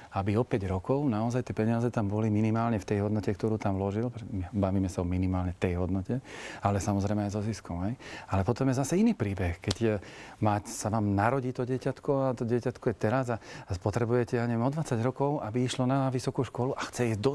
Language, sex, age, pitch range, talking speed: Slovak, male, 40-59, 100-125 Hz, 220 wpm